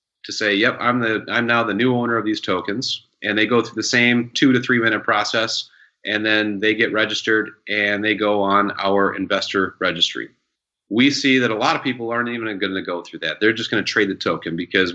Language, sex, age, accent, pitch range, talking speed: English, male, 30-49, American, 105-125 Hz, 220 wpm